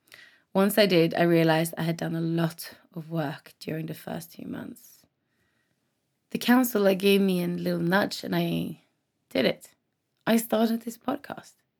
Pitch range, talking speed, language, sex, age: 165-230 Hz, 165 wpm, English, female, 20-39